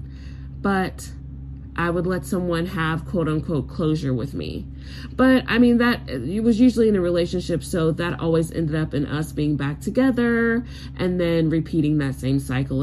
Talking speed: 175 wpm